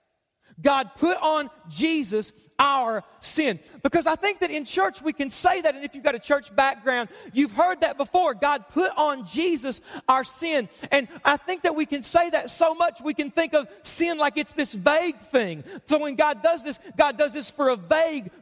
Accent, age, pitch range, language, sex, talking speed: American, 40-59, 270-320 Hz, English, male, 210 wpm